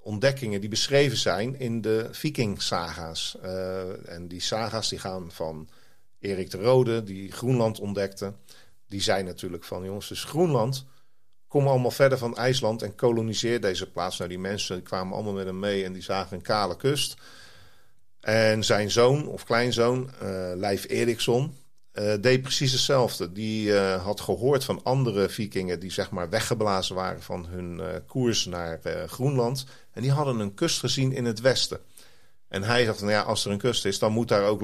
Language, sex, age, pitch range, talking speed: Dutch, male, 50-69, 95-125 Hz, 180 wpm